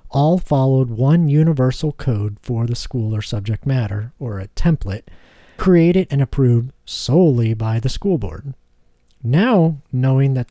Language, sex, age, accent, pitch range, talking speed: English, male, 40-59, American, 120-165 Hz, 145 wpm